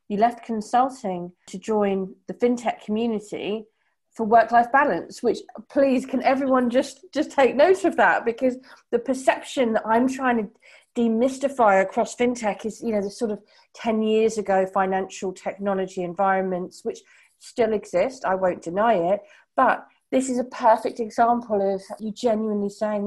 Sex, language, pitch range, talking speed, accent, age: female, English, 205-255 Hz, 155 wpm, British, 40-59